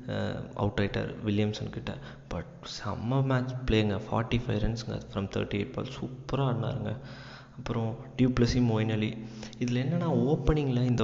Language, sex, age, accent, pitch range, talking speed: Tamil, male, 20-39, native, 110-130 Hz, 125 wpm